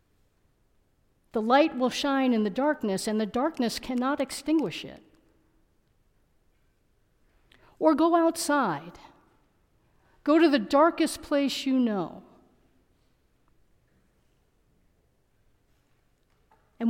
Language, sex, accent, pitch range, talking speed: English, female, American, 215-280 Hz, 85 wpm